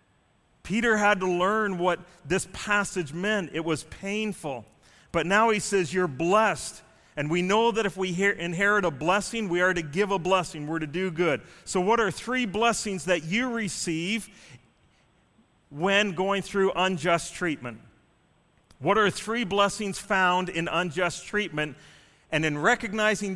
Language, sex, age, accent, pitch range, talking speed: English, male, 40-59, American, 165-205 Hz, 155 wpm